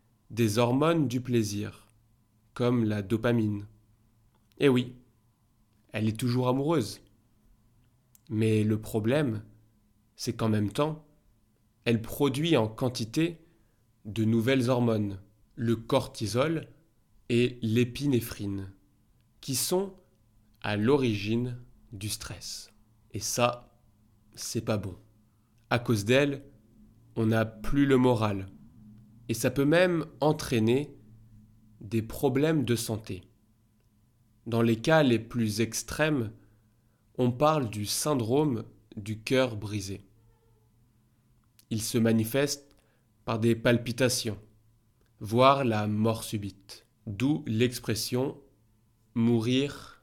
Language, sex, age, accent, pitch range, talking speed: French, male, 20-39, French, 110-125 Hz, 100 wpm